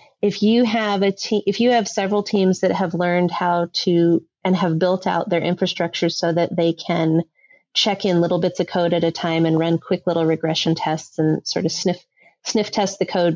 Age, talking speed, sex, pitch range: 30-49, 215 wpm, female, 165-190 Hz